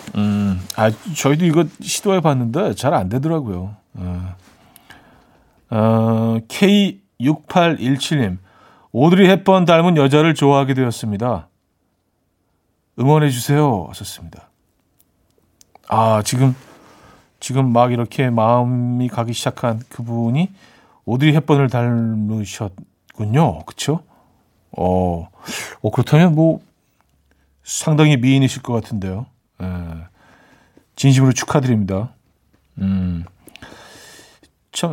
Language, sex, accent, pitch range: Korean, male, native, 110-160 Hz